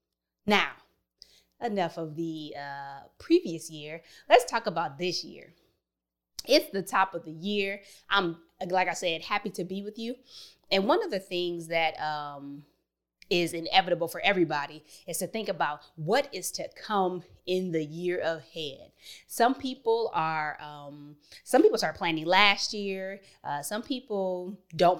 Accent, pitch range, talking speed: American, 160-200 Hz, 155 wpm